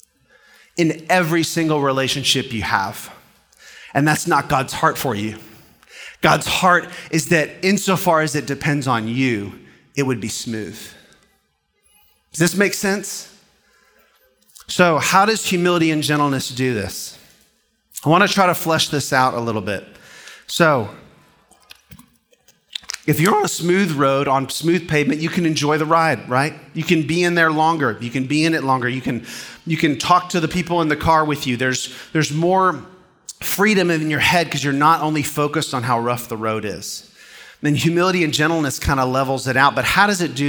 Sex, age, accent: male, 30-49, American